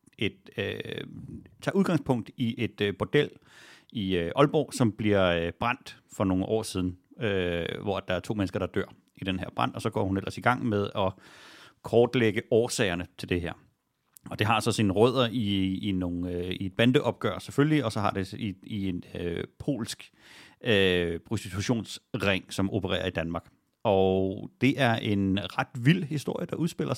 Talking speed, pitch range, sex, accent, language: 185 wpm, 95-125 Hz, male, native, Danish